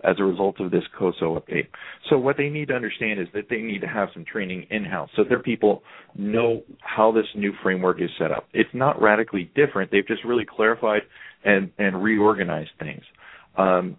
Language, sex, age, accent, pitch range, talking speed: English, male, 40-59, American, 95-115 Hz, 200 wpm